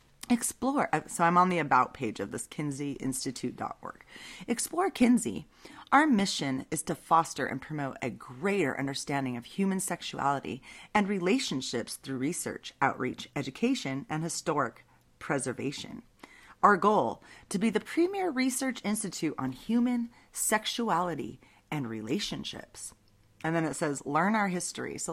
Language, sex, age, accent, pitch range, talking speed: English, female, 30-49, American, 135-195 Hz, 135 wpm